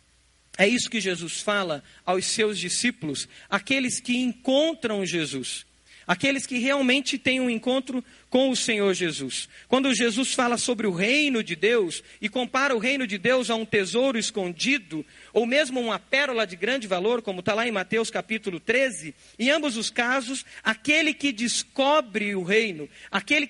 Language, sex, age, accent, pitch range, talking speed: Portuguese, male, 40-59, Brazilian, 185-265 Hz, 165 wpm